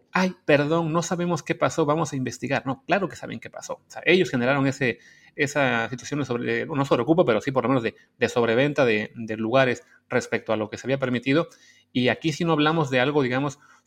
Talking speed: 235 wpm